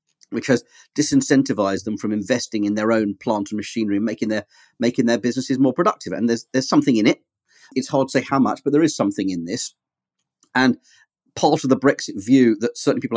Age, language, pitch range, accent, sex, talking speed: 40-59, English, 115-145 Hz, British, male, 215 wpm